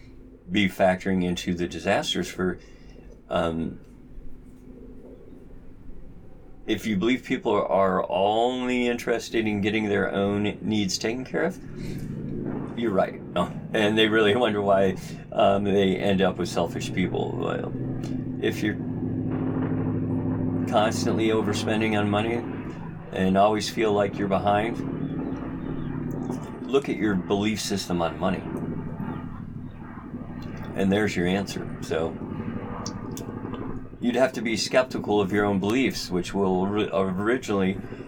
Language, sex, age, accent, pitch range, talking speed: English, male, 40-59, American, 95-110 Hz, 115 wpm